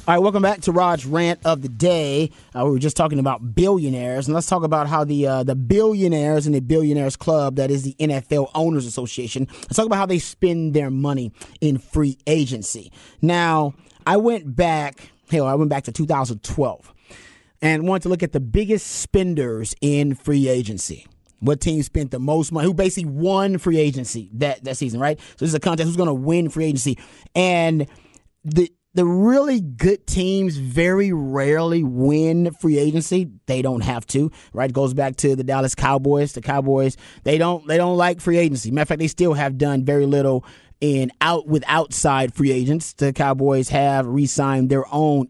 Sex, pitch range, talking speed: male, 135-160 Hz, 195 wpm